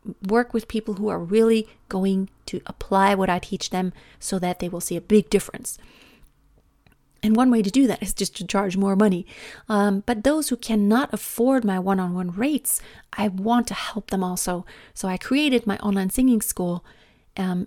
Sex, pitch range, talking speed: female, 185-220 Hz, 190 wpm